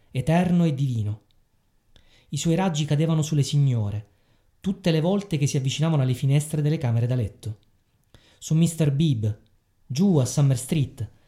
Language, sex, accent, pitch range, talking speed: Italian, male, native, 110-155 Hz, 150 wpm